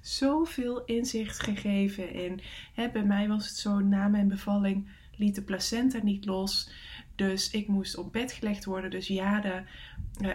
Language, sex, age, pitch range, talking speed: English, female, 20-39, 185-220 Hz, 170 wpm